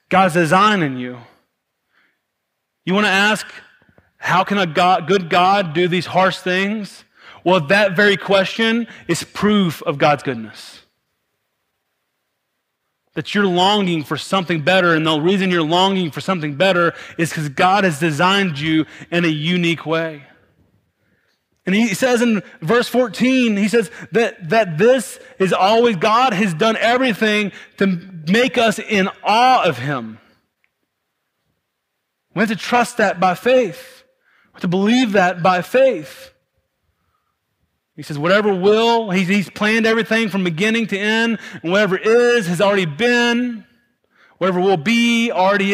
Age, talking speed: 30-49, 145 wpm